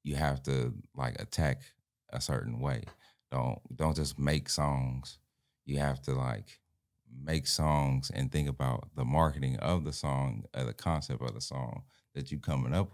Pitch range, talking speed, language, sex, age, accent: 65-80 Hz, 170 wpm, English, male, 30-49, American